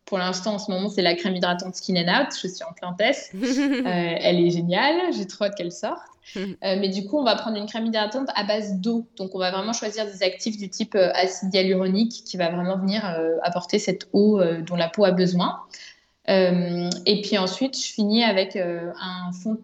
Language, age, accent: French, 20-39, French